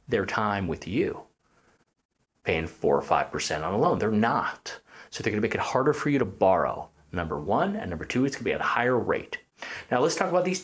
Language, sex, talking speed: English, male, 225 wpm